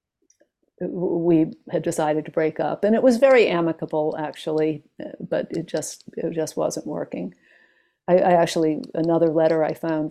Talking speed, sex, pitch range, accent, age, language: 150 wpm, female, 160-210 Hz, American, 50-69, English